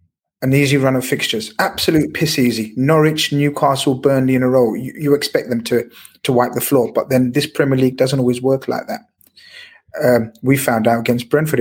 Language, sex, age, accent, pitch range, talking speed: English, male, 30-49, British, 120-145 Hz, 200 wpm